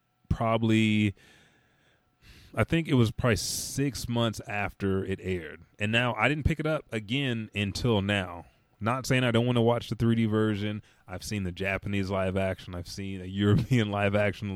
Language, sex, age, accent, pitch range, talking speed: English, male, 30-49, American, 95-115 Hz, 175 wpm